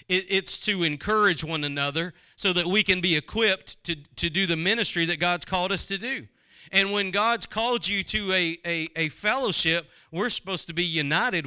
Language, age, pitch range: English, 40-59, 175-225 Hz